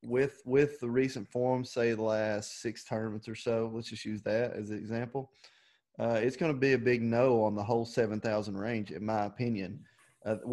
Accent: American